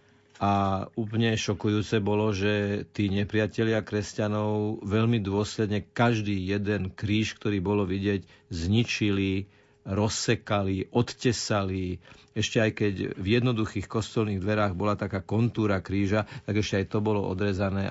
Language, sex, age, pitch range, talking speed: Slovak, male, 50-69, 100-110 Hz, 120 wpm